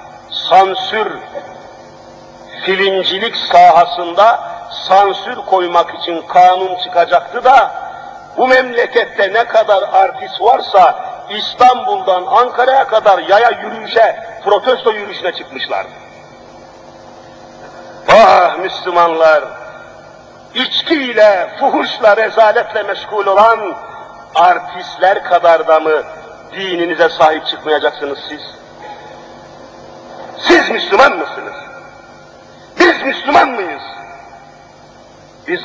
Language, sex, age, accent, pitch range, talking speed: Turkish, male, 50-69, native, 190-265 Hz, 75 wpm